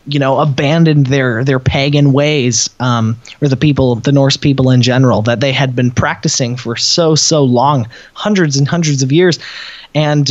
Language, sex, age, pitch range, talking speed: English, male, 20-39, 130-165 Hz, 180 wpm